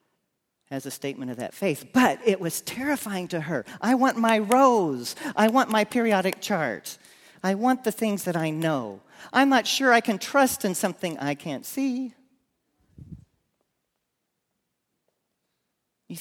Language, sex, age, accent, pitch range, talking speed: English, male, 40-59, American, 135-200 Hz, 150 wpm